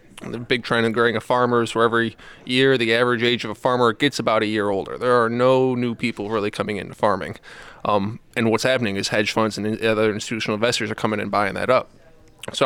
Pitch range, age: 110-125 Hz, 20-39